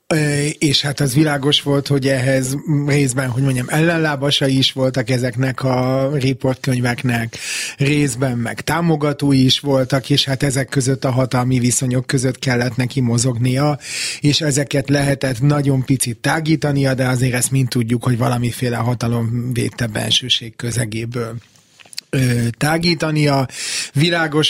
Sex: male